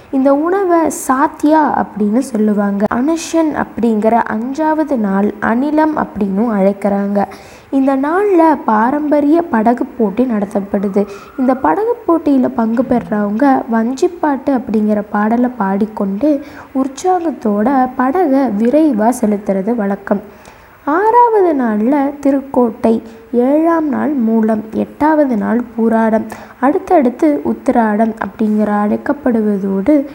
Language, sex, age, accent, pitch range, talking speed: Tamil, female, 20-39, native, 220-300 Hz, 90 wpm